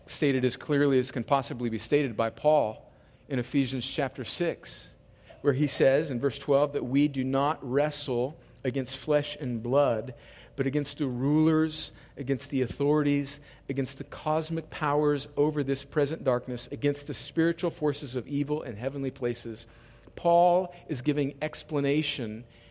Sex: male